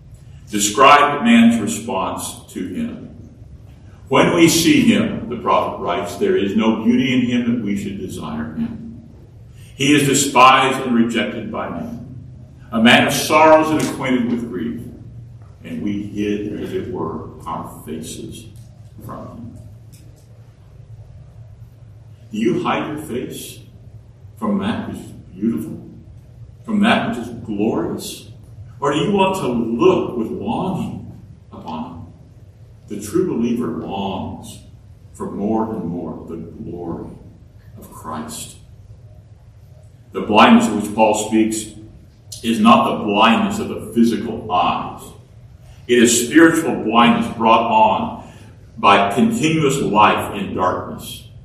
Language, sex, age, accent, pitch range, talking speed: English, male, 50-69, American, 105-120 Hz, 130 wpm